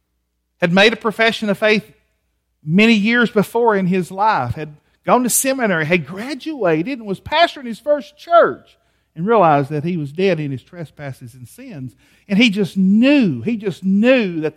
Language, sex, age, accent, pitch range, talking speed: English, male, 50-69, American, 155-235 Hz, 175 wpm